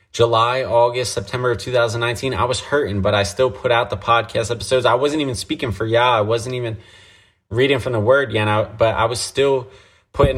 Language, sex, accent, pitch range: English, male, American, 100-120 Hz